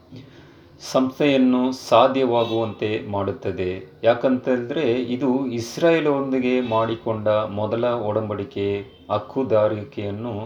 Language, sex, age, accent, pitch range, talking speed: Kannada, male, 30-49, native, 110-130 Hz, 55 wpm